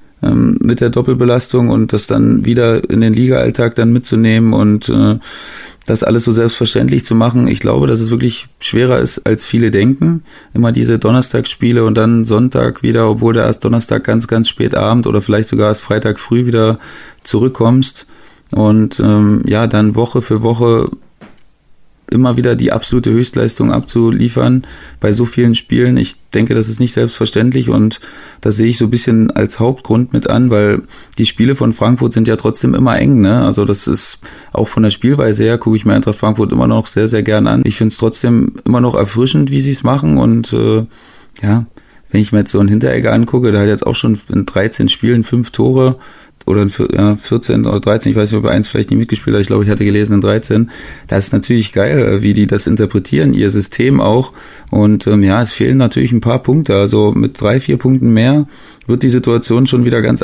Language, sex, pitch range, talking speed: German, male, 105-125 Hz, 200 wpm